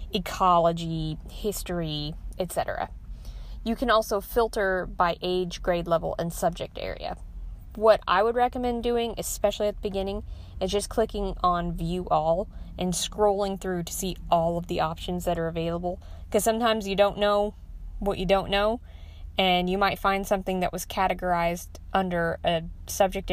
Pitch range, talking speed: 165-210 Hz, 155 wpm